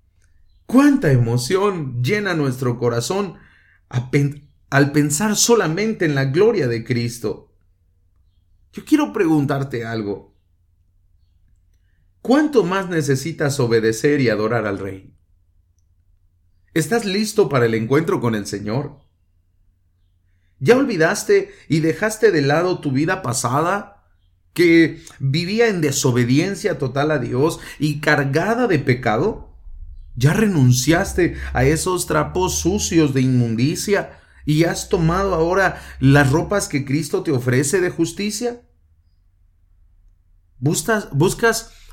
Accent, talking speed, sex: Mexican, 105 wpm, male